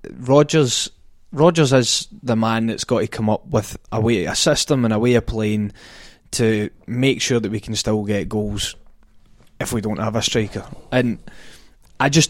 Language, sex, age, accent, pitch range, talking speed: English, male, 20-39, British, 105-125 Hz, 185 wpm